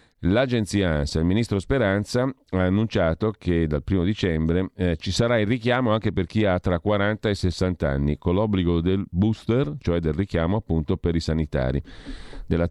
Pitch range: 80-100 Hz